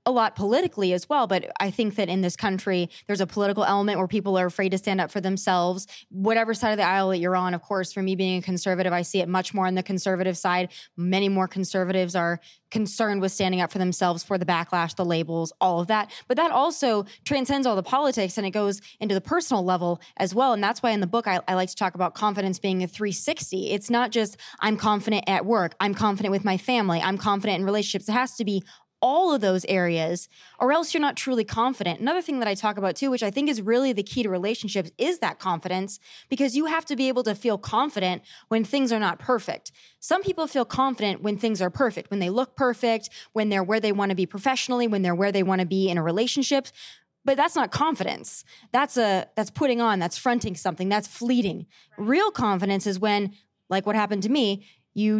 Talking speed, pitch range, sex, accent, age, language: 235 wpm, 185-230 Hz, female, American, 20-39, English